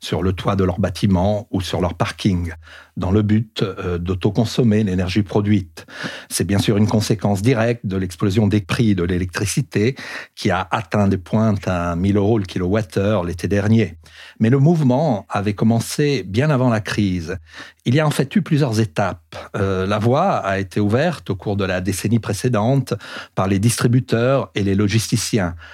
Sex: male